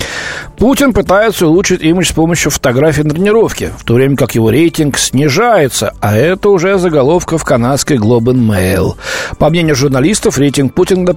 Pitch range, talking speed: 110-155 Hz, 160 wpm